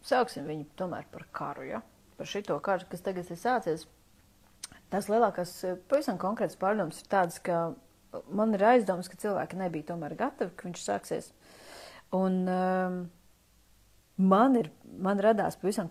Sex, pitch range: female, 160-195 Hz